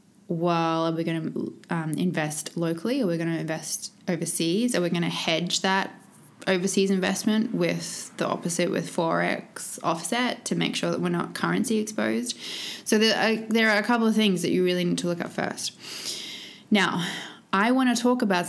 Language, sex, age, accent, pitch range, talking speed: English, female, 20-39, Australian, 175-215 Hz, 190 wpm